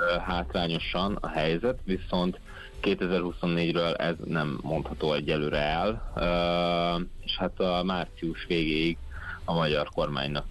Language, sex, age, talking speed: Hungarian, male, 30-49, 105 wpm